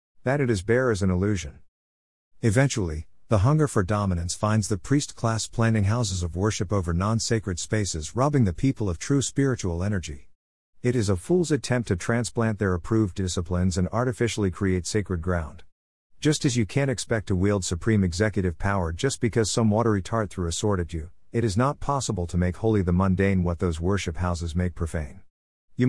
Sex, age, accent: male, 50-69, American